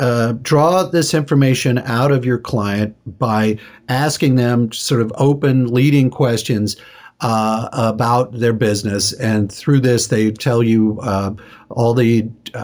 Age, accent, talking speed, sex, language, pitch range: 50-69, American, 145 wpm, male, English, 110-140 Hz